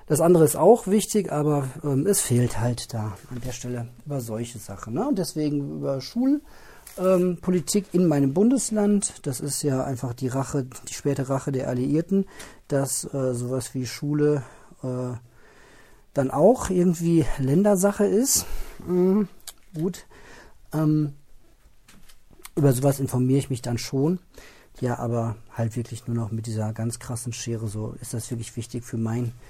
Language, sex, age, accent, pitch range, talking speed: German, male, 50-69, German, 125-155 Hz, 155 wpm